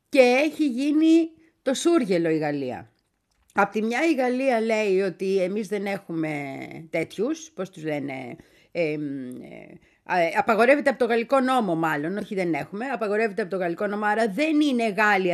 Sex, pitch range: female, 165-270 Hz